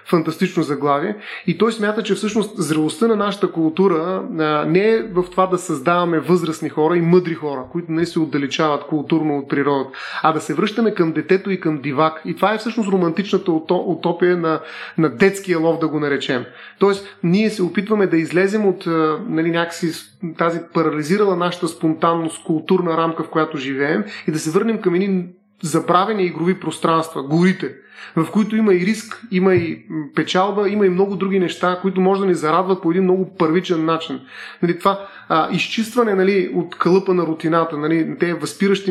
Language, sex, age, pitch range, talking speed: Bulgarian, male, 30-49, 165-195 Hz, 175 wpm